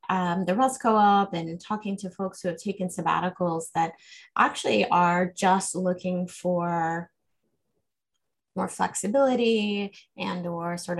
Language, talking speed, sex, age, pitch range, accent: English, 125 wpm, female, 20-39, 175-200 Hz, American